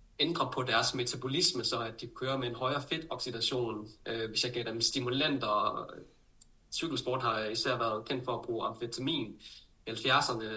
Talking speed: 165 wpm